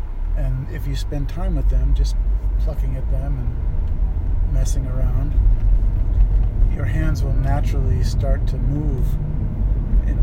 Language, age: English, 50-69